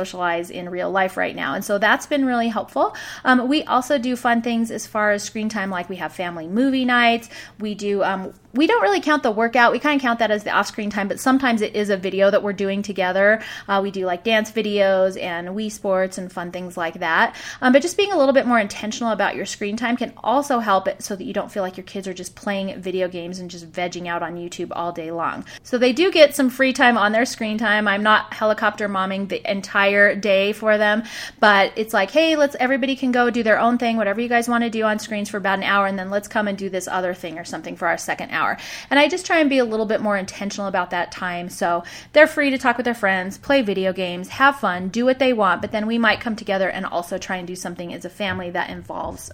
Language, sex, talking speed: English, female, 270 wpm